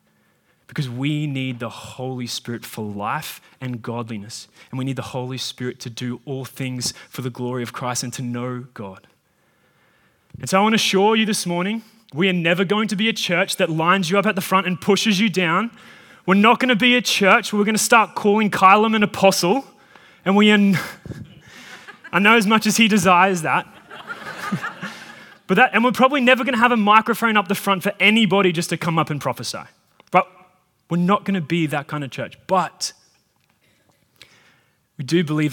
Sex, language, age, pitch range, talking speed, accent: male, English, 20-39, 130-195 Hz, 205 wpm, Australian